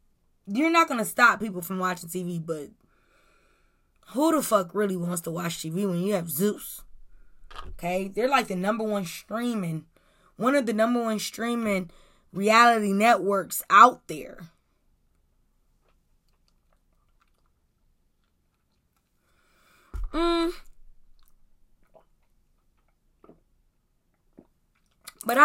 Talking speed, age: 95 wpm, 20-39